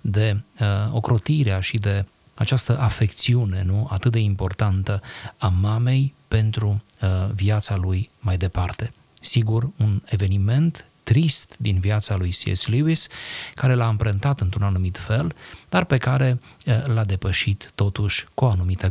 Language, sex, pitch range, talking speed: Romanian, male, 100-125 Hz, 125 wpm